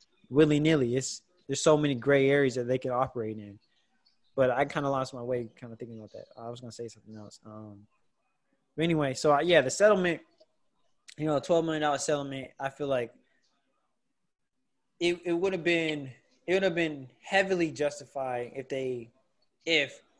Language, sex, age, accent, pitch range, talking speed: English, male, 20-39, American, 125-155 Hz, 185 wpm